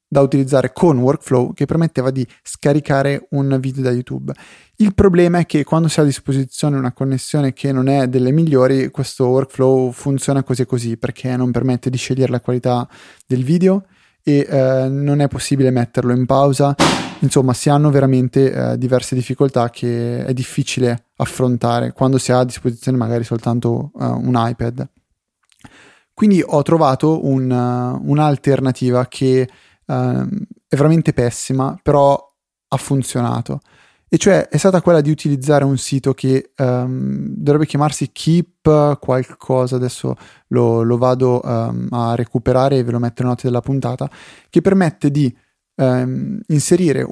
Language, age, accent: Italian, 20-39, native